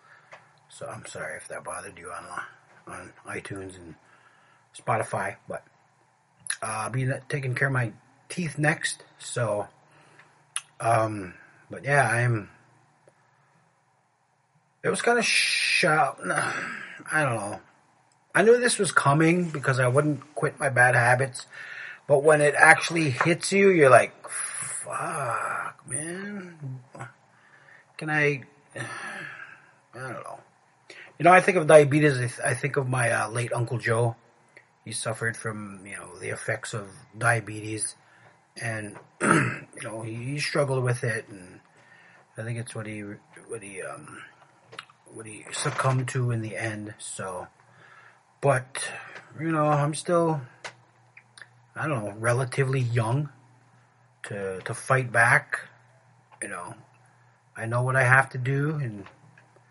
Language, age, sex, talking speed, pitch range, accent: English, 30-49, male, 135 wpm, 115-150 Hz, American